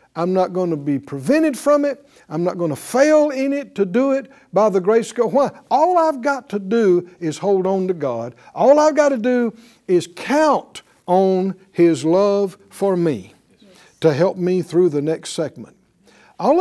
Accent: American